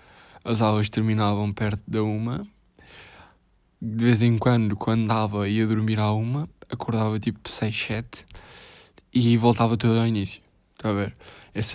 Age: 10-29